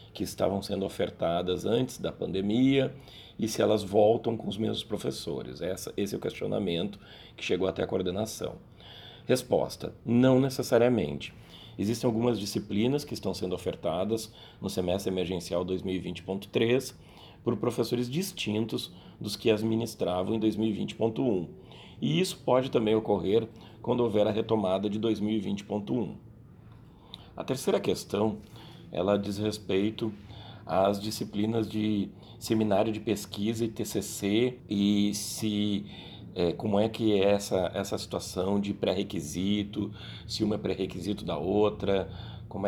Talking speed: 125 wpm